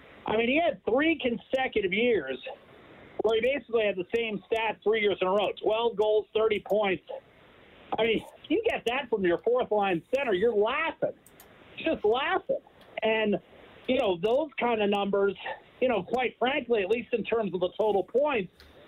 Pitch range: 200-250 Hz